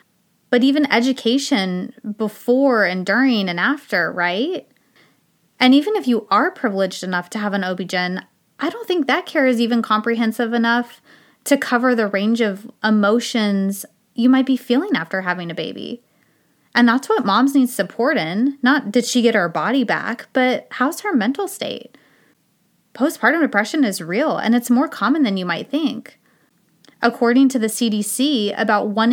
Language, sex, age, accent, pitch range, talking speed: English, female, 20-39, American, 200-255 Hz, 165 wpm